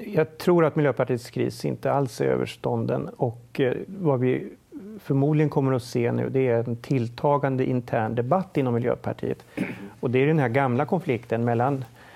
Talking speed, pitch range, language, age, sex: 165 wpm, 125-150 Hz, Swedish, 40-59, male